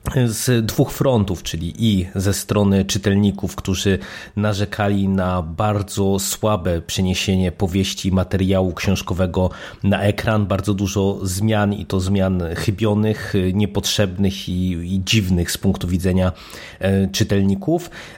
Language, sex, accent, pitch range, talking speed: Polish, male, native, 95-110 Hz, 110 wpm